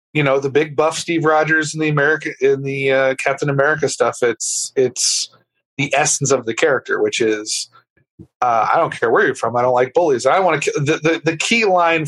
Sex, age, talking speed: male, 30-49, 225 wpm